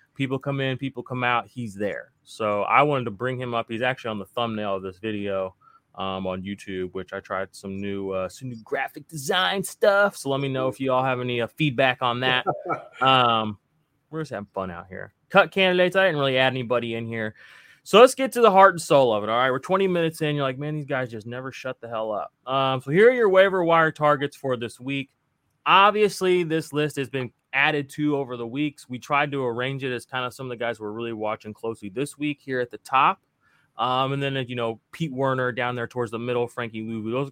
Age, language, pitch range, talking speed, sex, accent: 20-39, English, 115-140 Hz, 245 wpm, male, American